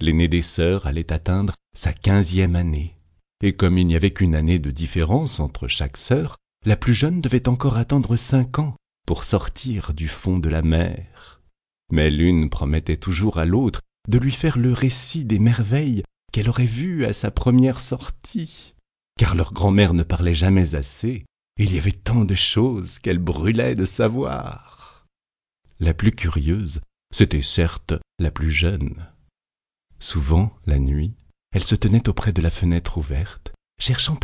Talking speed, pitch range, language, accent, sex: 165 wpm, 80-115 Hz, French, French, male